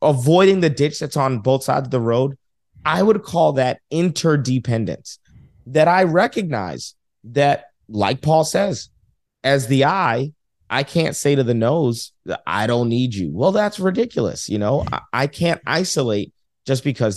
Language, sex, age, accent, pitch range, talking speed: English, male, 30-49, American, 125-170 Hz, 165 wpm